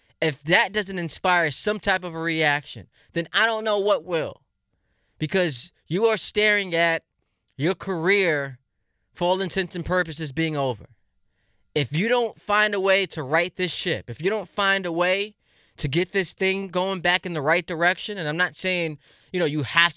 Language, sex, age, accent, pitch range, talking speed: English, male, 20-39, American, 150-190 Hz, 185 wpm